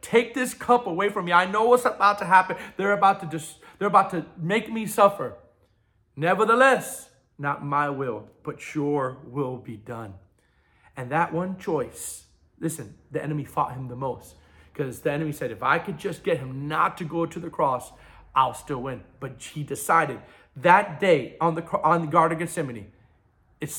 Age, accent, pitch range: 40-59, American, 130-180 Hz